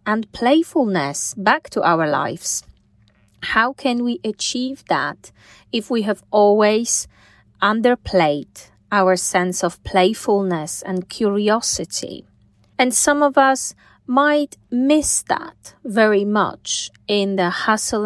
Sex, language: female, English